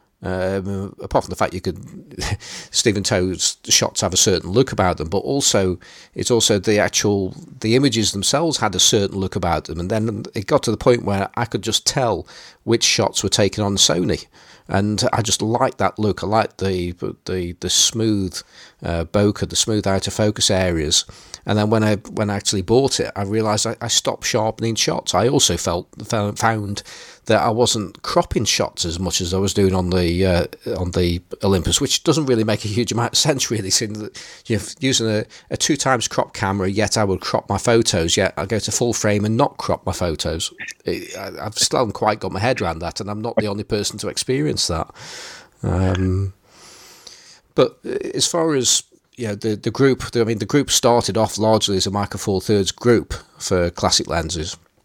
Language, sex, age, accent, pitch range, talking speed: English, male, 40-59, British, 95-115 Hz, 210 wpm